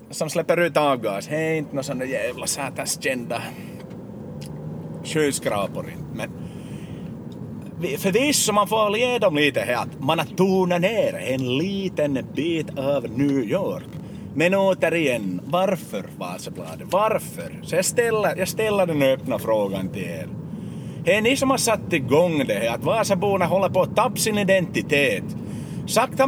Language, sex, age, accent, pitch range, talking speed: Swedish, male, 30-49, Finnish, 170-235 Hz, 160 wpm